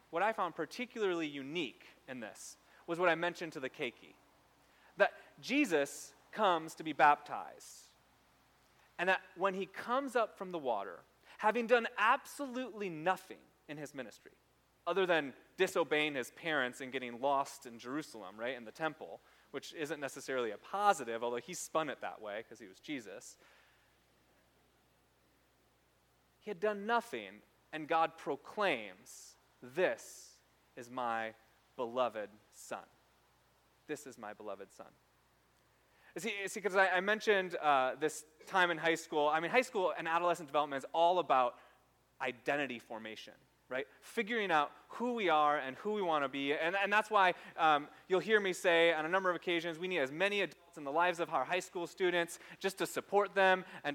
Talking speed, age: 165 wpm, 30-49